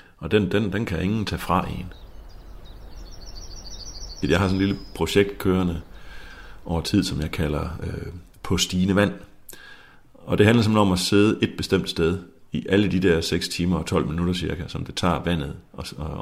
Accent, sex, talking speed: native, male, 190 wpm